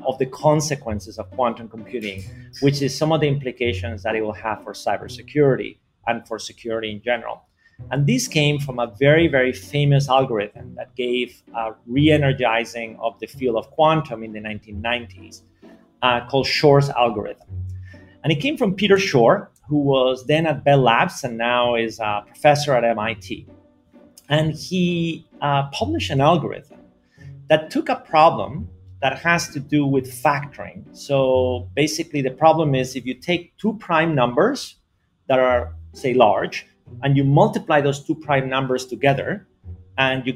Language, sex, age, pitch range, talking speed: English, male, 30-49, 115-155 Hz, 160 wpm